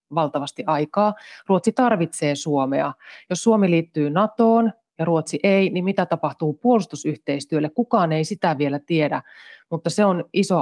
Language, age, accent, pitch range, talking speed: Finnish, 30-49, native, 155-200 Hz, 140 wpm